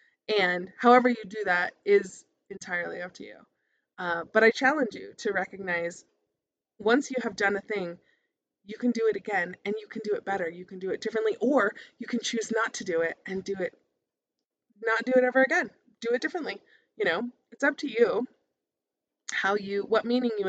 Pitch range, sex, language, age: 185-235 Hz, female, English, 20-39